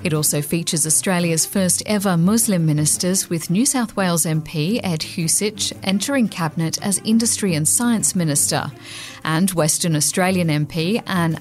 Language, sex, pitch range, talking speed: English, female, 165-215 Hz, 140 wpm